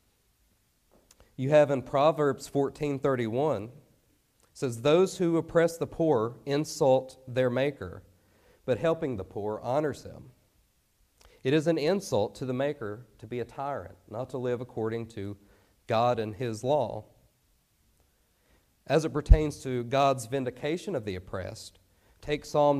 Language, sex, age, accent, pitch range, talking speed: English, male, 40-59, American, 105-145 Hz, 135 wpm